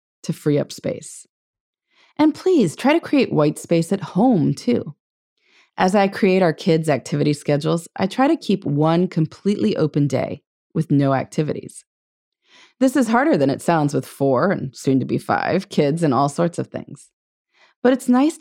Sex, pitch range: female, 150-230 Hz